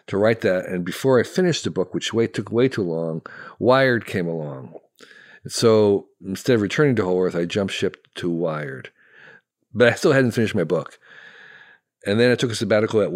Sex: male